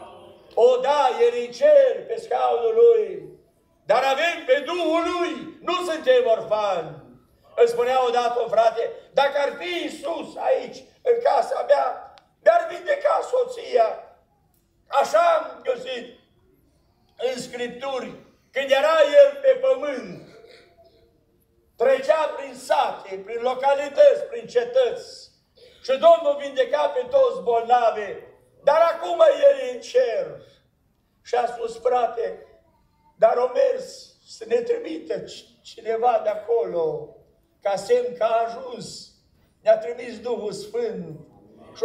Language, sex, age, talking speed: Romanian, male, 60-79, 120 wpm